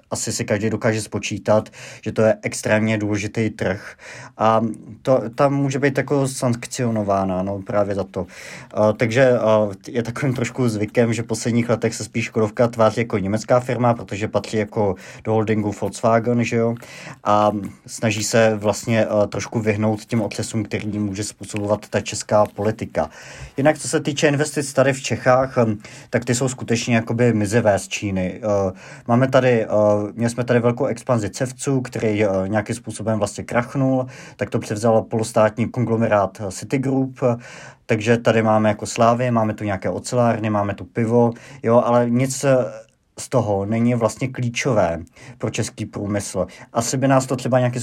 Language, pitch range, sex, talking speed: Czech, 105-125 Hz, male, 165 wpm